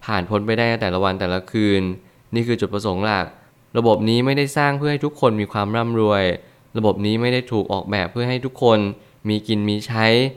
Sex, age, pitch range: male, 20-39, 100-120 Hz